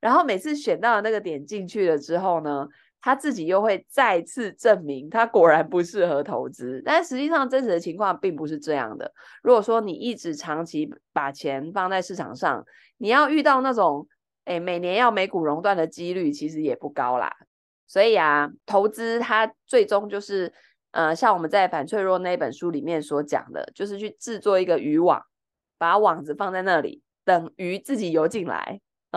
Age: 20-39